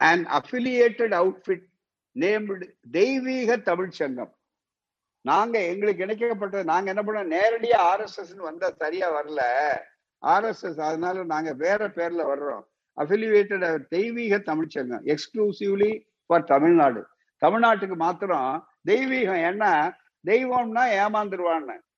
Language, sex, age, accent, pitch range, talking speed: Tamil, male, 60-79, native, 165-220 Hz, 55 wpm